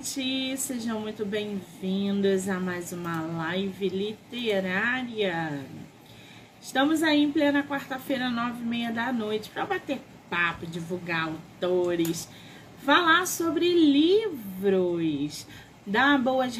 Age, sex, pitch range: 20-39, female, 190-260 Hz